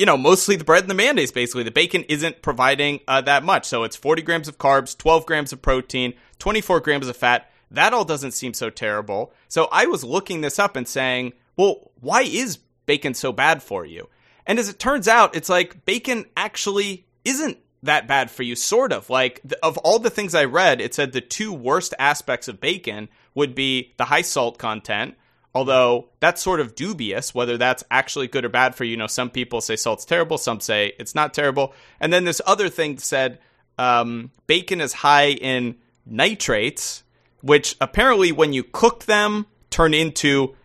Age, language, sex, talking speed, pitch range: 30-49, English, male, 195 wpm, 125-170 Hz